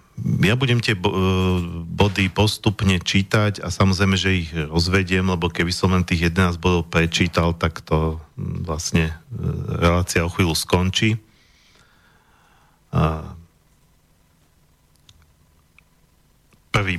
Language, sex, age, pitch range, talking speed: Slovak, male, 40-59, 85-100 Hz, 95 wpm